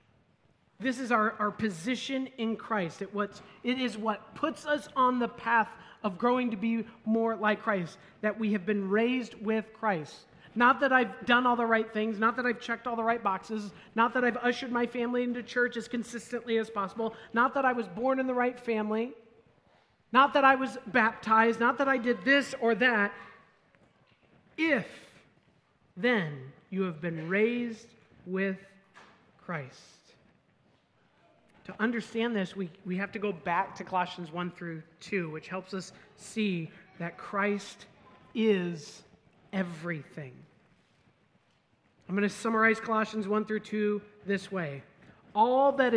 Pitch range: 185-235 Hz